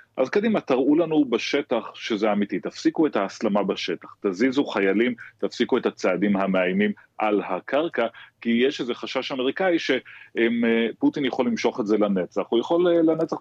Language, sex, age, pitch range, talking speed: Hebrew, male, 30-49, 105-145 Hz, 150 wpm